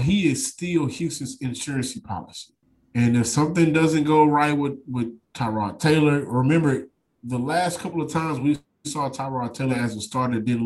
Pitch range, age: 125-165 Hz, 20-39